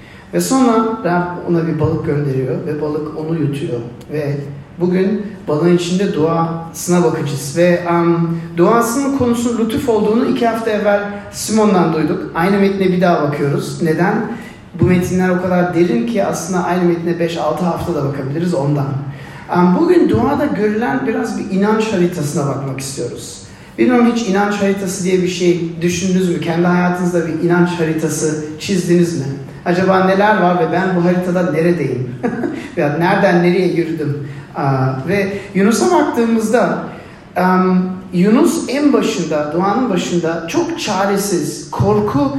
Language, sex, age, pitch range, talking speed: Turkish, male, 40-59, 160-210 Hz, 135 wpm